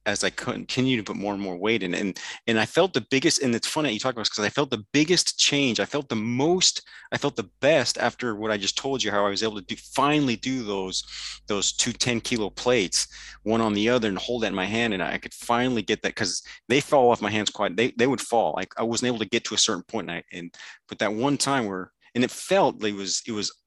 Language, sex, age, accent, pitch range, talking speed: English, male, 30-49, American, 100-125 Hz, 280 wpm